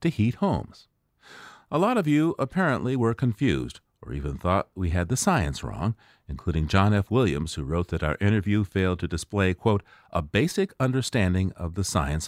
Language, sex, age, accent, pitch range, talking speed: English, male, 50-69, American, 85-130 Hz, 180 wpm